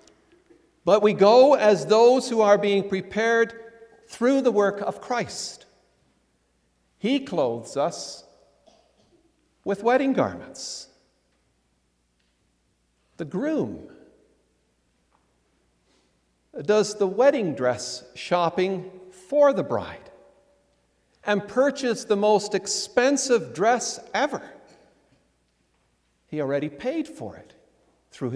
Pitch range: 165-230 Hz